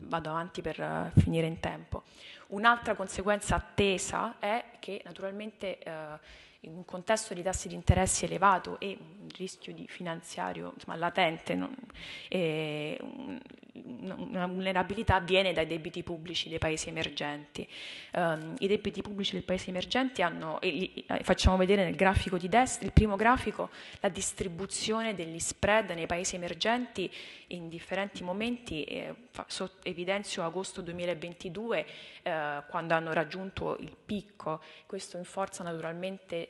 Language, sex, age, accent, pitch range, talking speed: Italian, female, 20-39, native, 165-195 Hz, 125 wpm